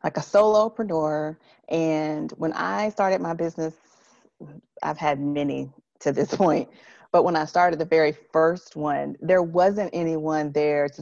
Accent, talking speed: American, 150 wpm